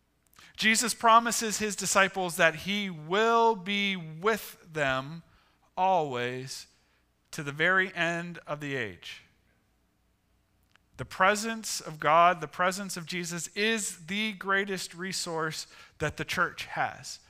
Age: 40-59